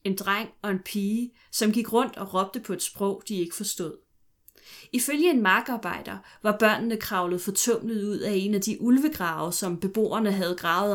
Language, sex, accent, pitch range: Danish, female, native, 185-230 Hz